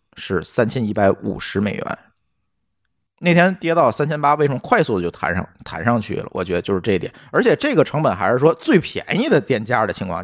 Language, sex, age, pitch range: Chinese, male, 50-69, 110-180 Hz